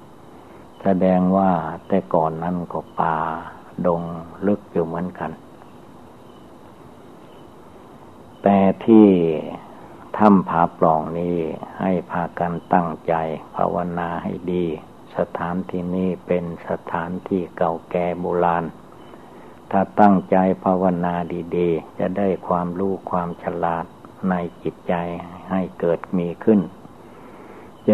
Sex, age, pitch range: male, 60-79, 85-95 Hz